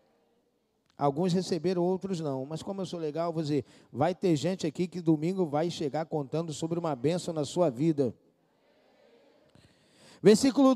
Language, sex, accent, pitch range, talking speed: Portuguese, male, Brazilian, 215-275 Hz, 145 wpm